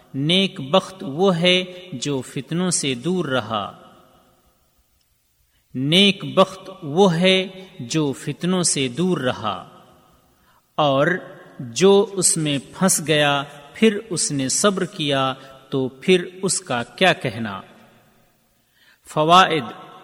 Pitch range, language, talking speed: 140-185 Hz, Urdu, 110 wpm